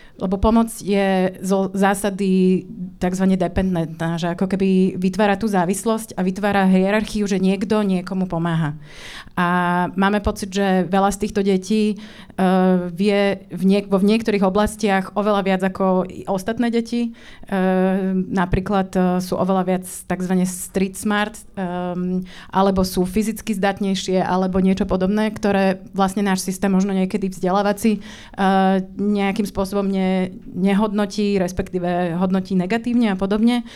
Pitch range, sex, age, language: 185-210 Hz, female, 30-49, Slovak